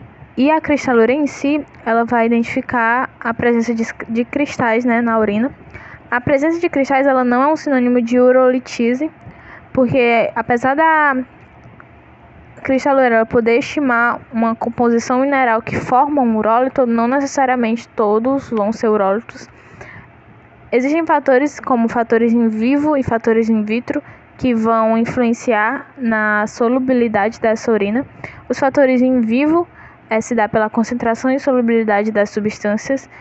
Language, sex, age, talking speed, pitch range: Portuguese, female, 10-29, 135 wpm, 225-260 Hz